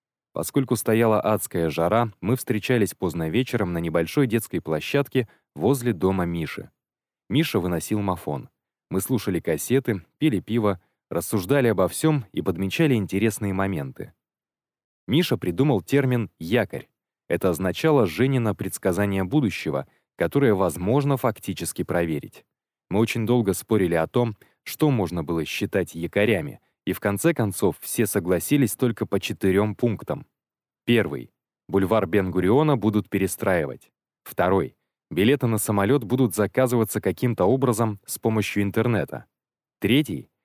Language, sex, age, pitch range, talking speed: Russian, male, 20-39, 95-125 Hz, 120 wpm